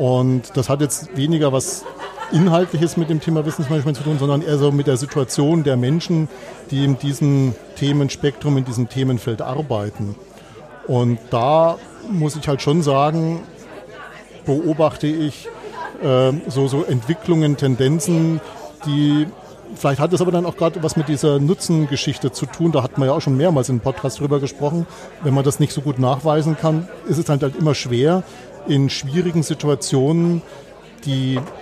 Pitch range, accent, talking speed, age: 135-165 Hz, German, 165 wpm, 40-59